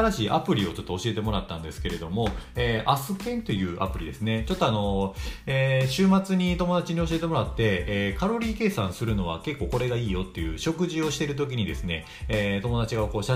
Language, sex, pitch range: Japanese, male, 90-120 Hz